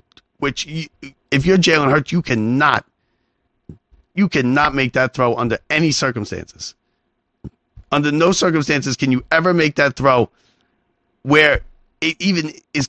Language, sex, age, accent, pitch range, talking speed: English, male, 30-49, American, 130-170 Hz, 135 wpm